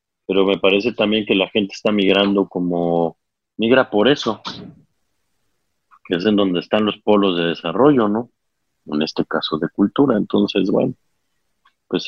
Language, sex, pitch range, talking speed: Spanish, male, 95-110 Hz, 155 wpm